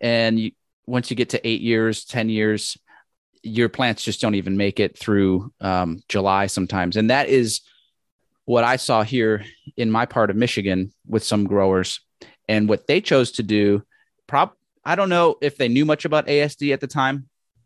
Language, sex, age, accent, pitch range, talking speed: English, male, 30-49, American, 105-135 Hz, 185 wpm